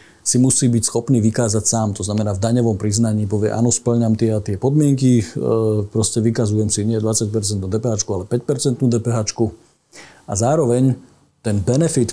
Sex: male